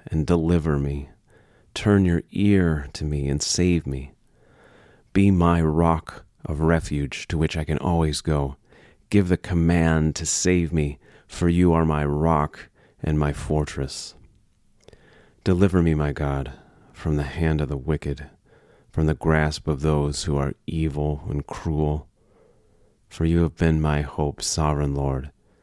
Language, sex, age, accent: English, male, 30-49, American